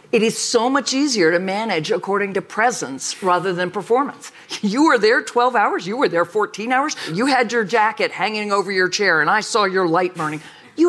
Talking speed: 210 wpm